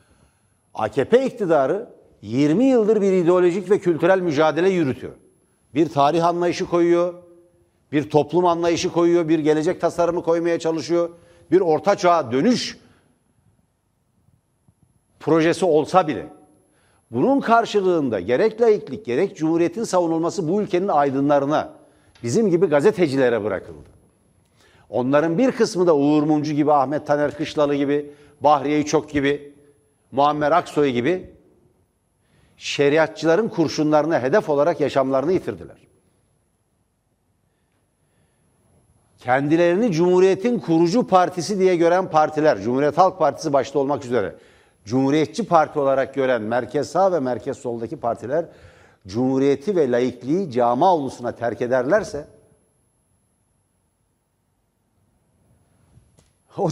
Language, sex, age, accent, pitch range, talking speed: Turkish, male, 60-79, native, 125-175 Hz, 105 wpm